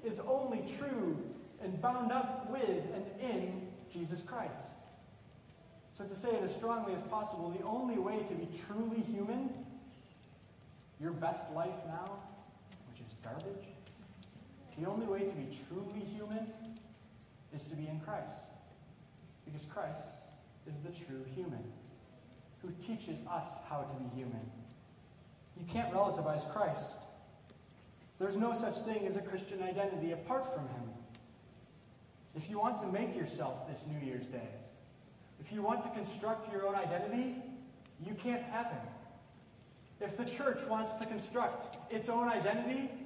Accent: American